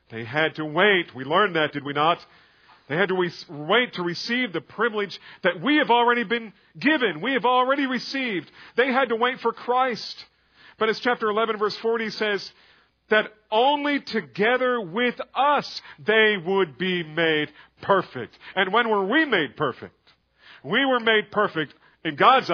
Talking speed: 170 wpm